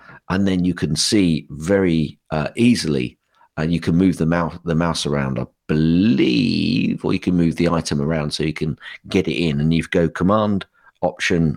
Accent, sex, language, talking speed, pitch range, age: British, male, English, 195 wpm, 80-100 Hz, 50-69